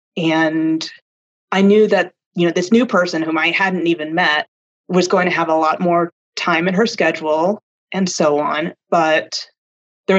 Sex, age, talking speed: female, 30-49, 175 wpm